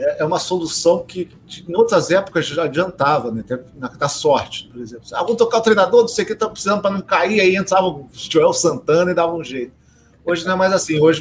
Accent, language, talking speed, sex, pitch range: Brazilian, Portuguese, 245 wpm, male, 135-180 Hz